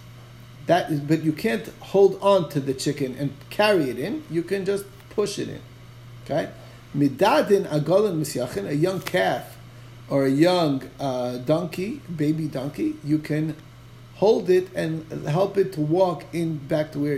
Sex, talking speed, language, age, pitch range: male, 155 wpm, English, 30-49, 125-170 Hz